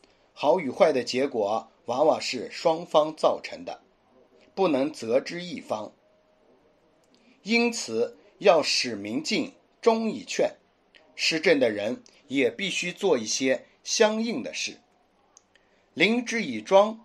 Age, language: 50-69, Chinese